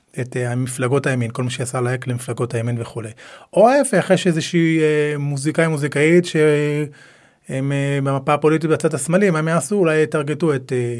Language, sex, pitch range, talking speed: Hebrew, male, 130-165 Hz, 165 wpm